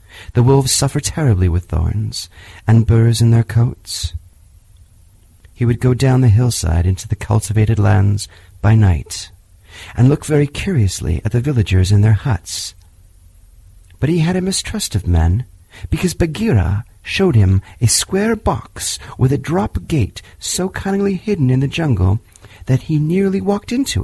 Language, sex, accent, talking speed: English, male, American, 155 wpm